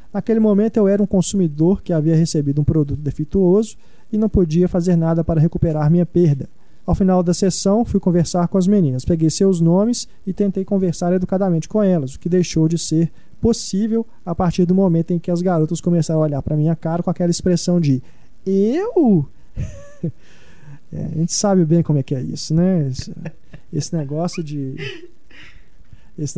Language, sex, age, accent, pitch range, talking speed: Portuguese, male, 20-39, Brazilian, 150-185 Hz, 180 wpm